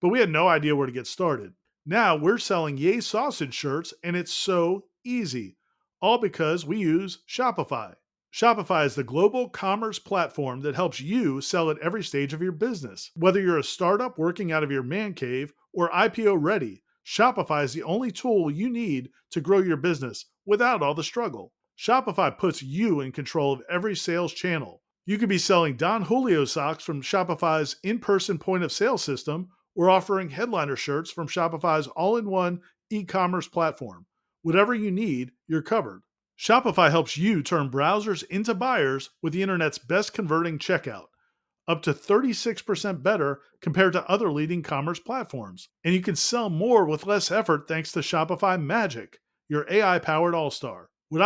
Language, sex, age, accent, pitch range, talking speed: English, male, 40-59, American, 150-205 Hz, 170 wpm